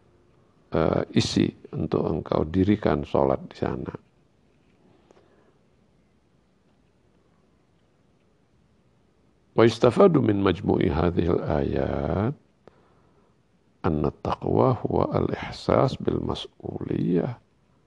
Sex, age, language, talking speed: male, 50-69, Indonesian, 65 wpm